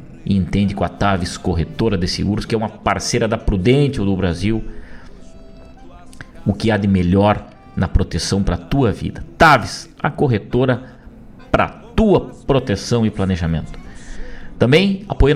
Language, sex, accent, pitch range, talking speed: Portuguese, male, Brazilian, 95-135 Hz, 150 wpm